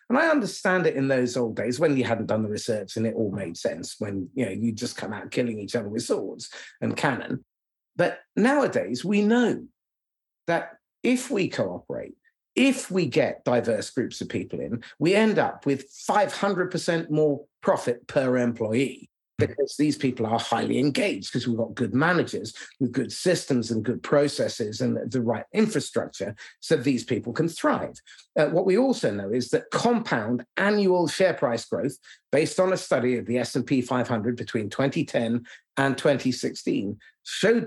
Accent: British